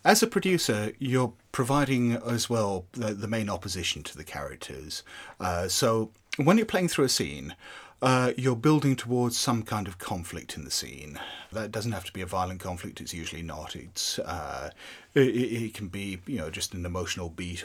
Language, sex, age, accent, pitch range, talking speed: English, male, 30-49, British, 85-115 Hz, 190 wpm